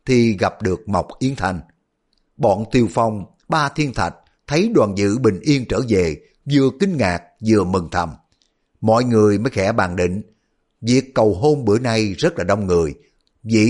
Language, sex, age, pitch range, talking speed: Vietnamese, male, 60-79, 95-130 Hz, 180 wpm